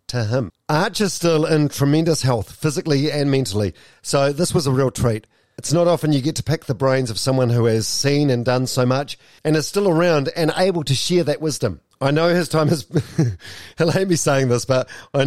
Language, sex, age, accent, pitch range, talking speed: English, male, 40-59, Australian, 125-160 Hz, 225 wpm